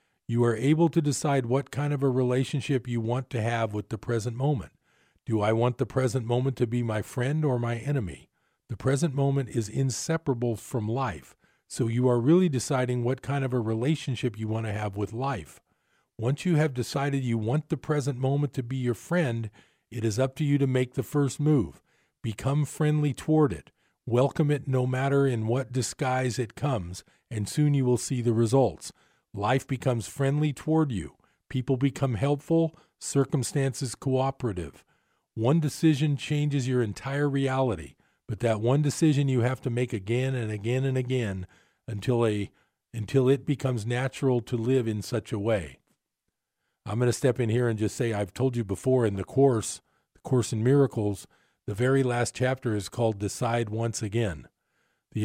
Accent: American